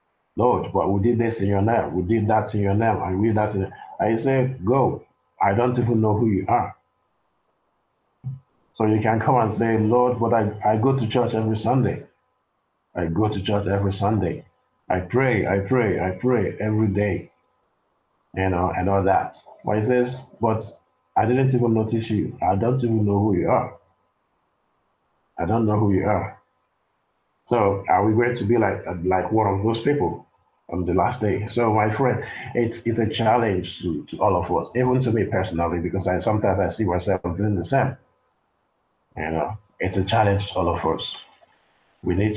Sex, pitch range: male, 95-115 Hz